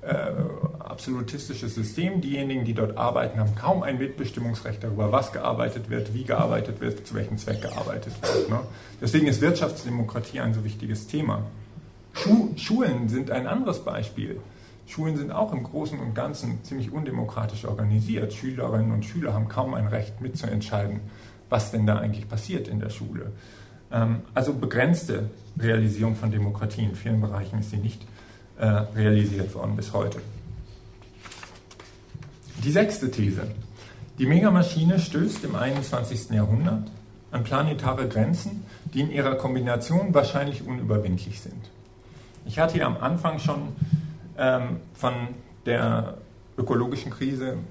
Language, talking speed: German, 135 wpm